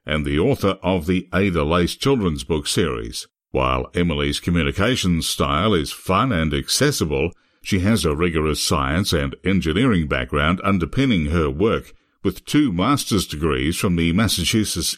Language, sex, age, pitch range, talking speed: English, male, 60-79, 75-100 Hz, 145 wpm